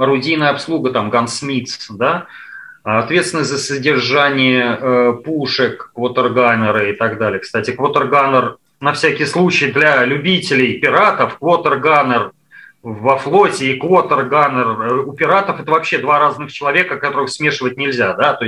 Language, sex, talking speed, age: Russian, male, 125 wpm, 30-49